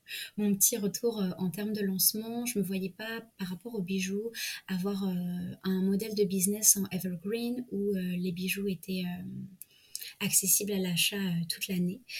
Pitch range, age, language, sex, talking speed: 175-200 Hz, 20-39, French, female, 180 wpm